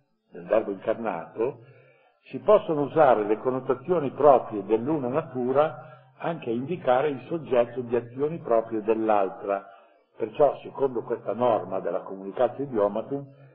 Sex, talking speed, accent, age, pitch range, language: male, 120 wpm, native, 60-79, 110-140 Hz, Italian